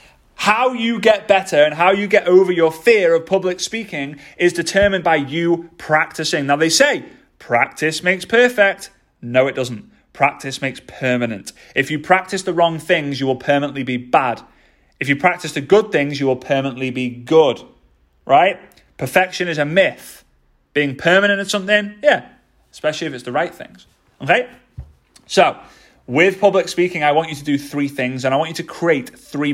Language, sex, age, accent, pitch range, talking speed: English, male, 30-49, British, 145-200 Hz, 180 wpm